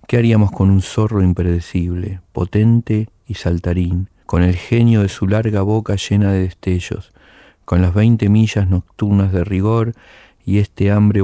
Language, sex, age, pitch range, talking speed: Spanish, male, 40-59, 90-105 Hz, 155 wpm